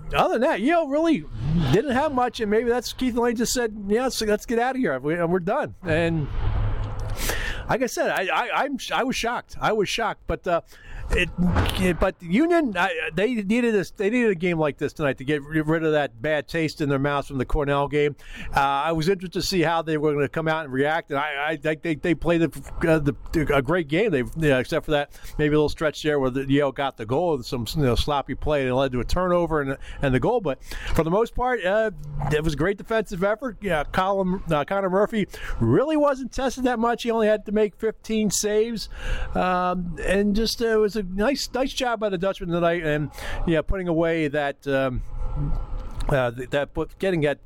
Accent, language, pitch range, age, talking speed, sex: American, English, 145-215 Hz, 50-69, 235 wpm, male